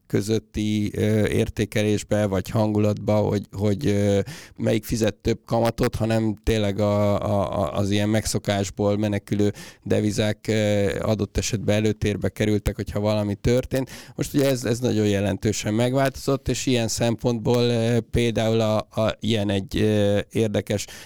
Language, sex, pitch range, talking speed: Hungarian, male, 100-115 Hz, 120 wpm